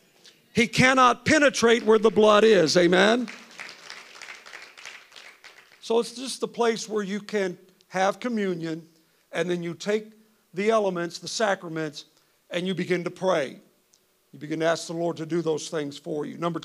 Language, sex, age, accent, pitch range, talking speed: English, male, 50-69, American, 165-205 Hz, 160 wpm